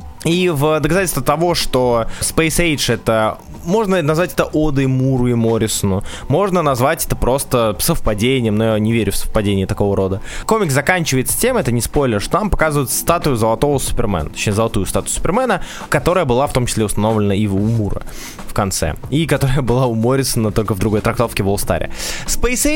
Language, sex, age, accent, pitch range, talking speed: Russian, male, 20-39, native, 110-165 Hz, 175 wpm